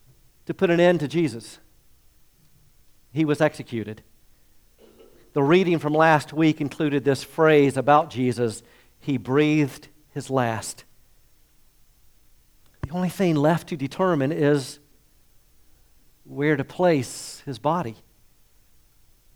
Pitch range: 130-195 Hz